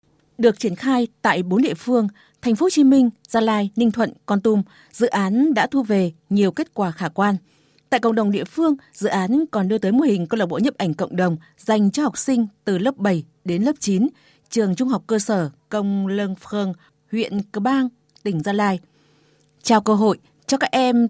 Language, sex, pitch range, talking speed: Vietnamese, female, 180-235 Hz, 220 wpm